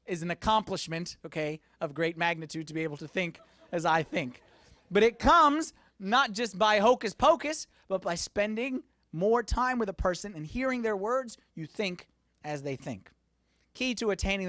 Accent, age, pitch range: American, 30-49, 205-275 Hz